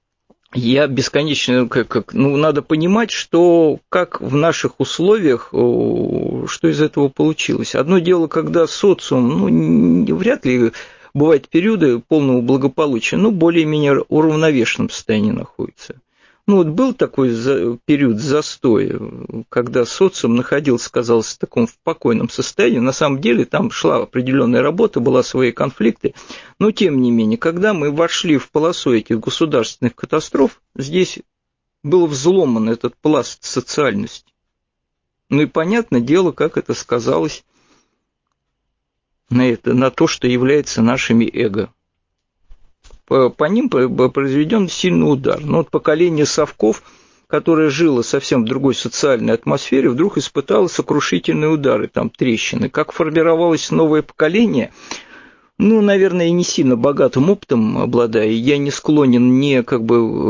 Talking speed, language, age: 130 wpm, Russian, 50-69